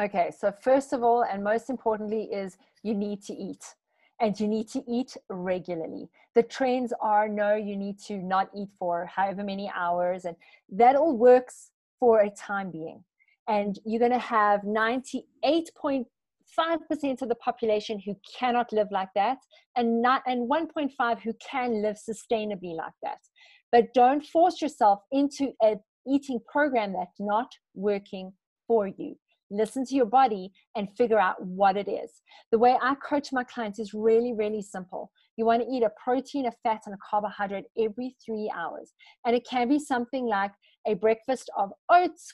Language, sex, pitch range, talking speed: English, female, 210-265 Hz, 170 wpm